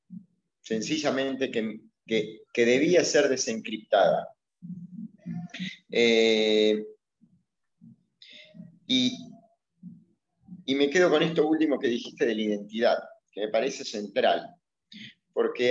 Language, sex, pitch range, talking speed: Spanish, male, 115-175 Hz, 90 wpm